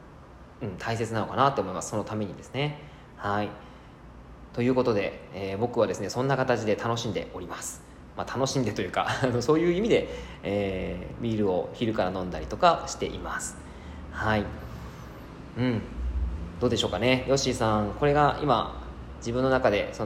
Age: 20-39